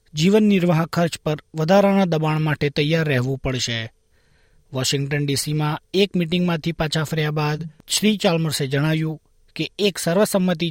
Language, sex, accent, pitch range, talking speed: Gujarati, male, native, 135-175 Hz, 130 wpm